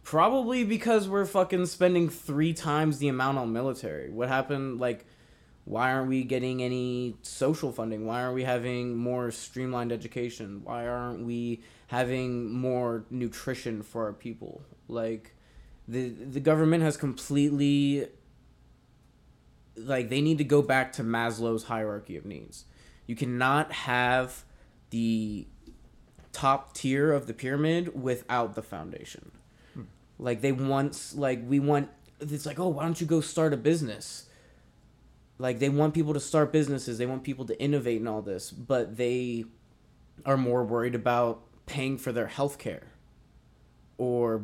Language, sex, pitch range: English, male, 115-145 Hz